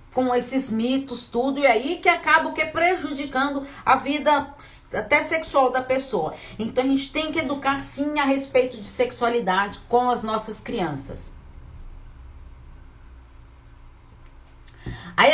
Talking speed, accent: 130 wpm, Brazilian